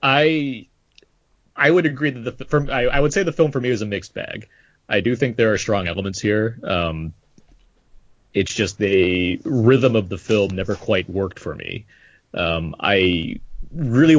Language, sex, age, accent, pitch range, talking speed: English, male, 30-49, American, 95-125 Hz, 180 wpm